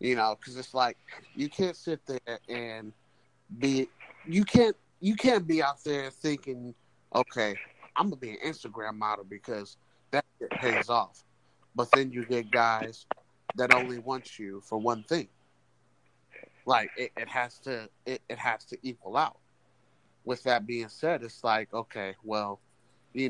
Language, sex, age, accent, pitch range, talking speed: English, male, 30-49, American, 110-130 Hz, 165 wpm